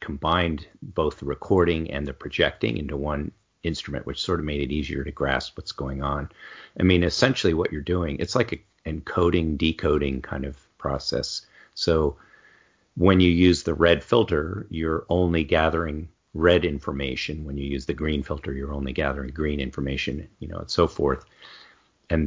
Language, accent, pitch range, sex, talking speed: English, American, 75-90 Hz, male, 170 wpm